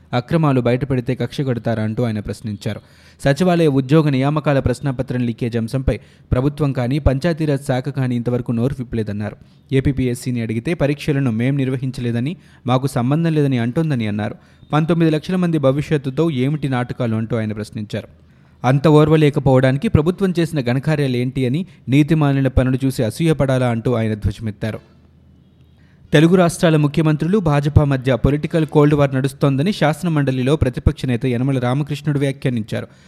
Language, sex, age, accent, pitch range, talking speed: Telugu, male, 20-39, native, 120-150 Hz, 120 wpm